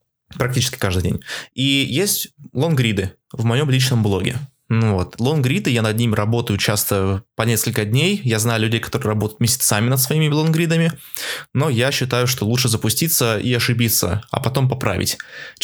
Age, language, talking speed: 20-39, Russian, 155 wpm